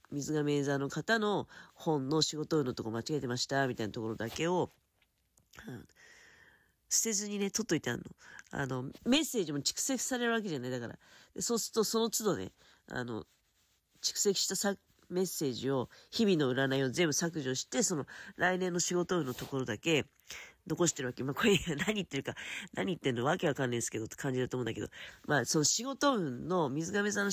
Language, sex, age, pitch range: Japanese, female, 40-59, 130-220 Hz